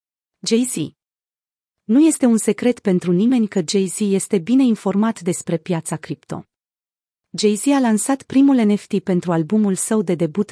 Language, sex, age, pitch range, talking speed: Romanian, female, 30-49, 175-230 Hz, 145 wpm